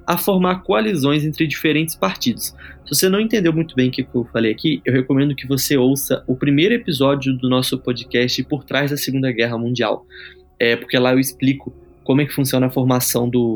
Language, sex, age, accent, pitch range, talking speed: Portuguese, male, 20-39, Brazilian, 120-155 Hz, 200 wpm